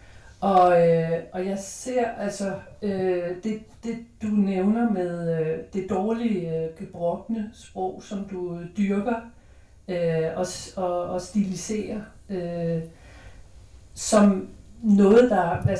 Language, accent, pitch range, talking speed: Danish, native, 180-215 Hz, 115 wpm